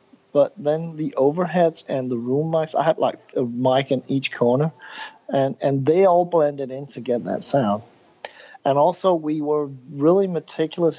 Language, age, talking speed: English, 50-69, 175 wpm